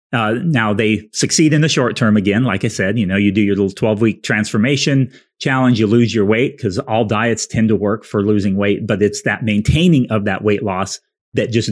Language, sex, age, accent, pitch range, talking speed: English, male, 30-49, American, 105-125 Hz, 230 wpm